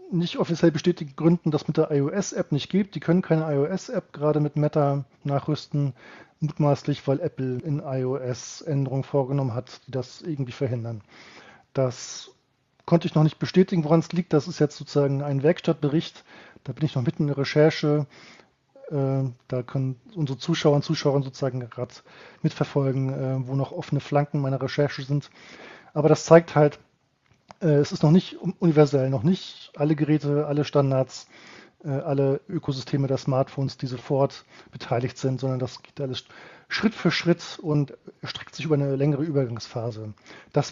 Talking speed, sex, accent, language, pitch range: 160 wpm, male, German, German, 135-160 Hz